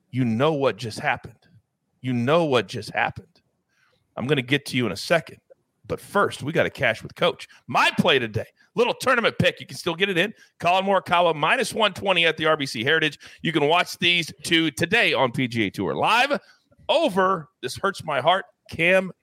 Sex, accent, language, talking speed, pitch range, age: male, American, English, 195 wpm, 140-195 Hz, 40-59